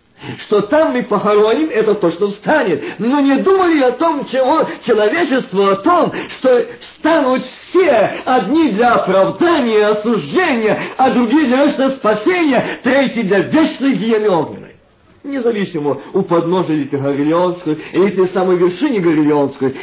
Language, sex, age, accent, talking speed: Russian, male, 50-69, native, 135 wpm